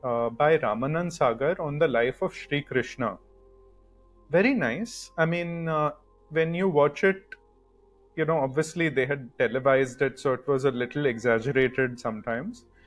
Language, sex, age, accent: English, male, 30-49, Indian